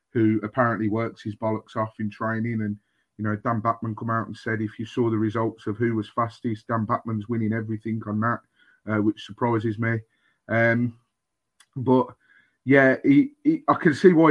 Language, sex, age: English, male, 30-49